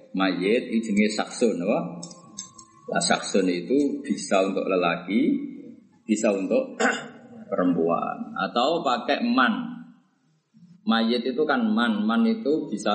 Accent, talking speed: native, 110 wpm